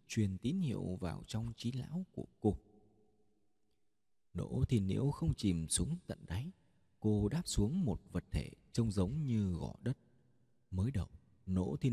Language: Vietnamese